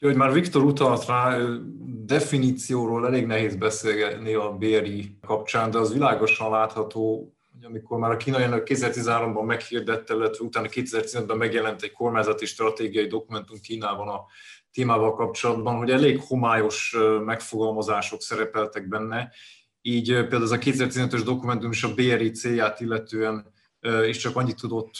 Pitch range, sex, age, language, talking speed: 110-125 Hz, male, 20-39, Hungarian, 135 wpm